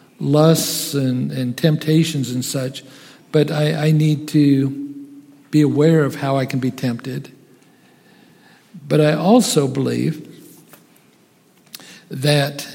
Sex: male